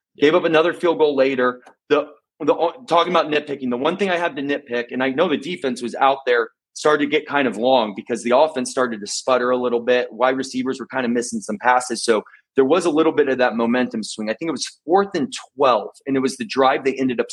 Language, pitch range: English, 115-145 Hz